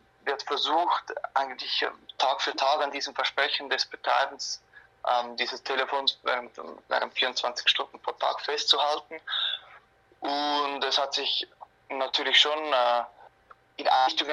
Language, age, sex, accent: German, 20-39, male, German